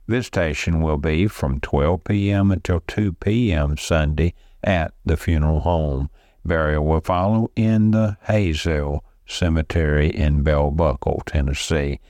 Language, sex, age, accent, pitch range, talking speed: English, male, 60-79, American, 75-95 Hz, 125 wpm